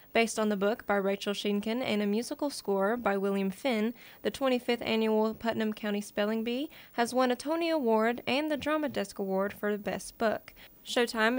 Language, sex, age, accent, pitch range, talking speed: English, female, 10-29, American, 210-260 Hz, 190 wpm